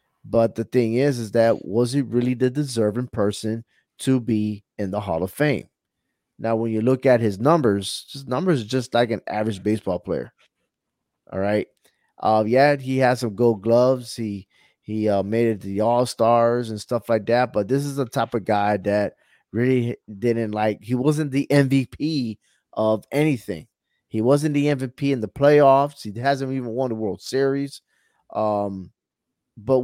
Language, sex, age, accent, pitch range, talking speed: English, male, 20-39, American, 110-135 Hz, 180 wpm